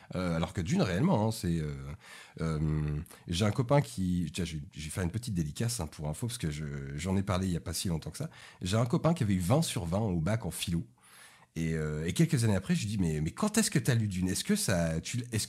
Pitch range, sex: 90-145 Hz, male